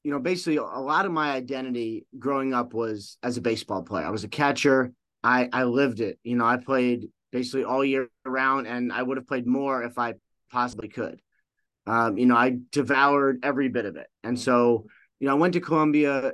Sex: male